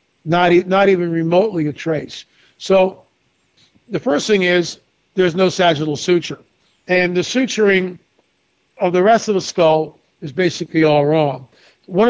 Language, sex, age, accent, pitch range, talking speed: English, male, 50-69, American, 160-185 Hz, 145 wpm